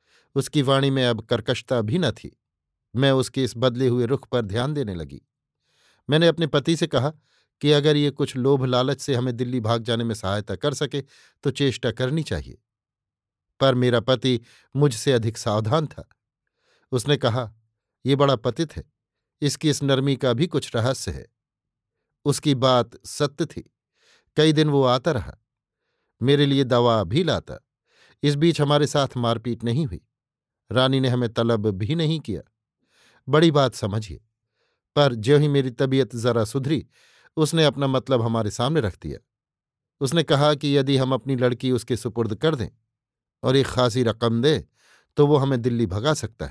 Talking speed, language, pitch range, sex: 170 wpm, Hindi, 115-145 Hz, male